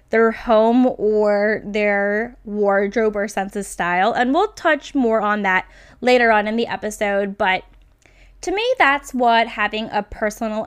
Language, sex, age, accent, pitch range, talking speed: English, female, 10-29, American, 210-285 Hz, 155 wpm